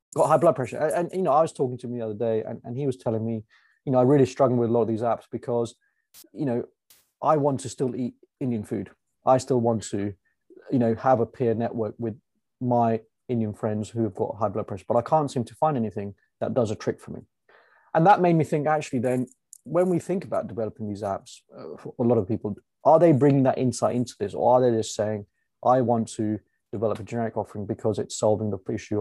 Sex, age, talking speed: male, 20-39, 245 wpm